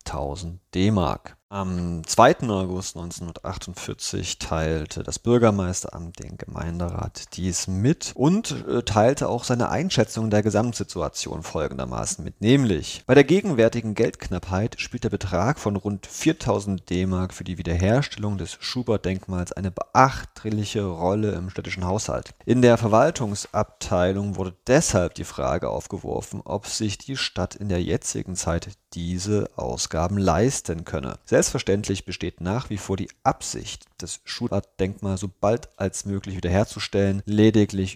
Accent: German